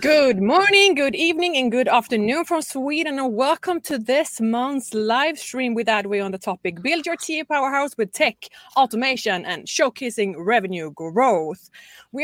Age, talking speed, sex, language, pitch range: 20-39, 160 wpm, female, English, 200-280 Hz